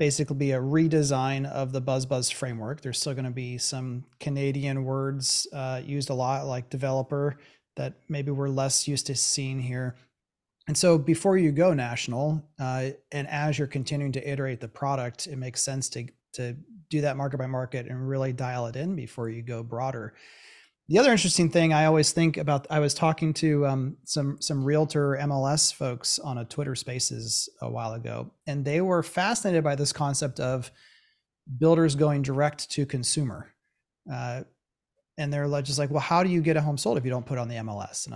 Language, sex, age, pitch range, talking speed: English, male, 30-49, 130-150 Hz, 190 wpm